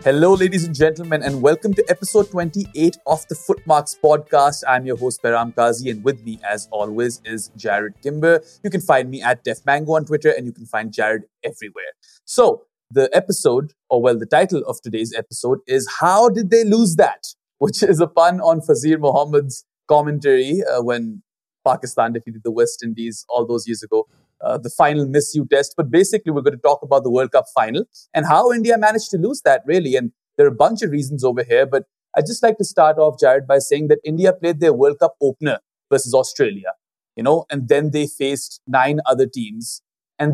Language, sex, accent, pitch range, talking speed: English, male, Indian, 130-190 Hz, 205 wpm